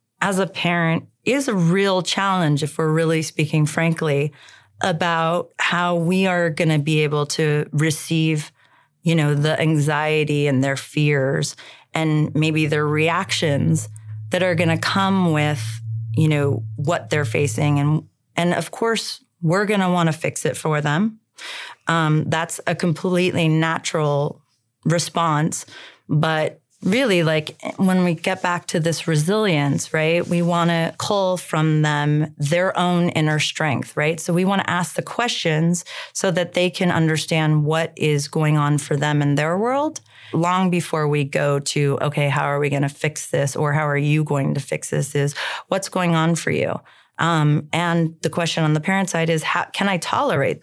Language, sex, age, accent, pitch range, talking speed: English, female, 30-49, American, 150-175 Hz, 175 wpm